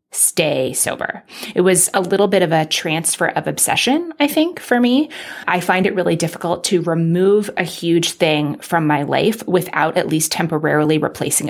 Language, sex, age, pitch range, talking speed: English, female, 20-39, 155-195 Hz, 180 wpm